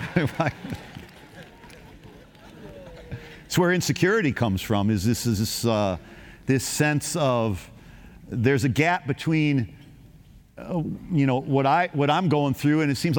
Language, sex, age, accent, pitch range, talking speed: English, male, 50-69, American, 130-155 Hz, 130 wpm